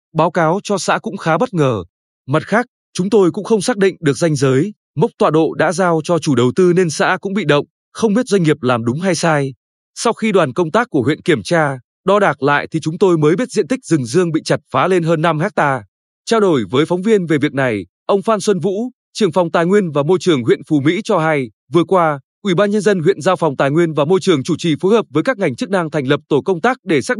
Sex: male